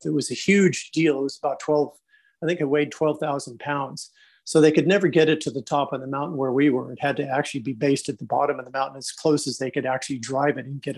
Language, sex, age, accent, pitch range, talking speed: English, male, 40-59, American, 140-160 Hz, 285 wpm